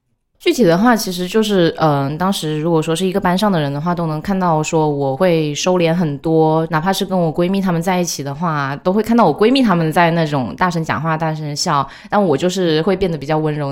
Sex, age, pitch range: female, 20-39, 155-195 Hz